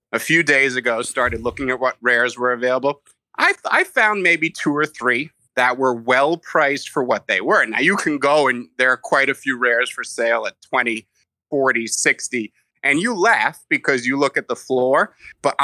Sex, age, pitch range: male, 30-49, 120-145 Hz